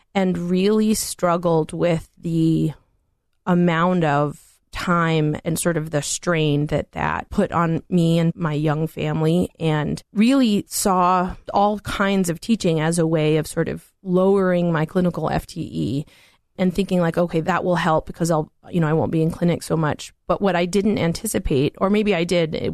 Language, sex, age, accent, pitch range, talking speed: English, female, 30-49, American, 160-190 Hz, 175 wpm